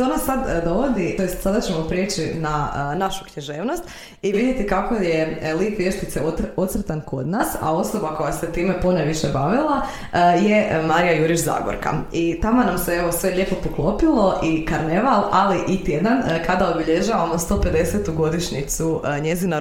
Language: Croatian